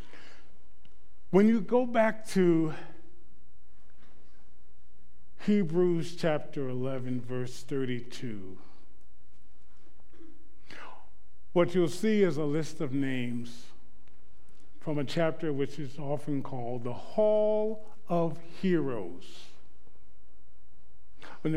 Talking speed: 85 wpm